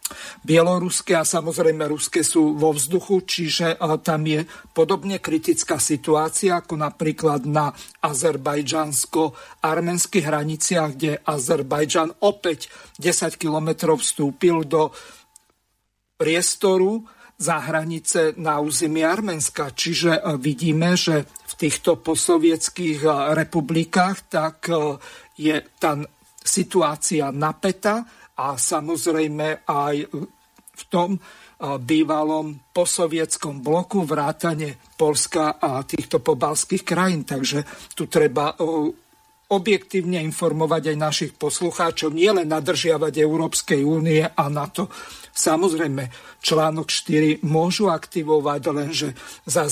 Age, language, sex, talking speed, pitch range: 50-69, Slovak, male, 95 wpm, 155-175 Hz